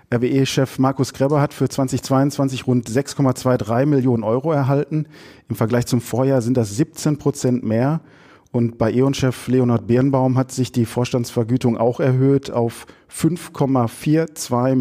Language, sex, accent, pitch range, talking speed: German, male, German, 120-145 Hz, 135 wpm